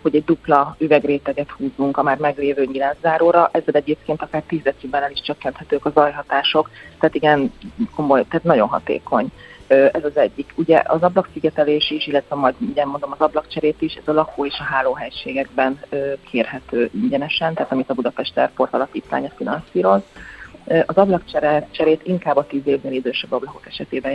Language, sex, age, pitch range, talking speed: Hungarian, female, 30-49, 135-155 Hz, 155 wpm